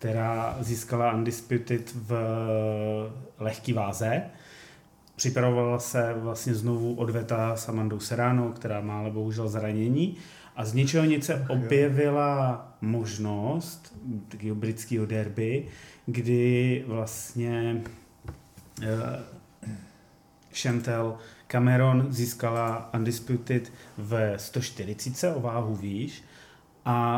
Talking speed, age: 80 wpm, 30-49